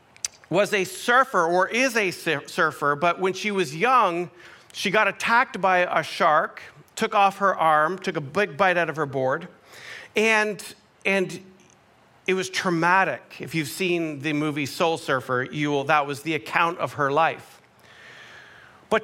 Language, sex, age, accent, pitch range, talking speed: English, male, 40-59, American, 165-215 Hz, 165 wpm